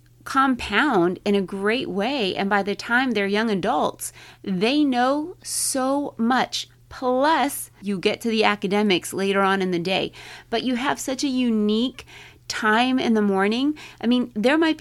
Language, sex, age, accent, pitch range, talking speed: English, female, 30-49, American, 190-235 Hz, 165 wpm